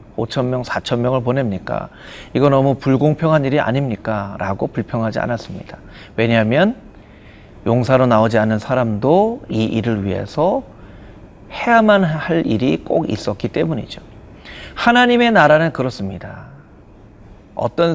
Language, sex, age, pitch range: Korean, male, 40-59, 110-155 Hz